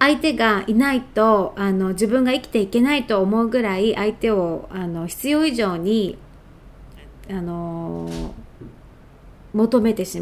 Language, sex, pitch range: Japanese, female, 190-250 Hz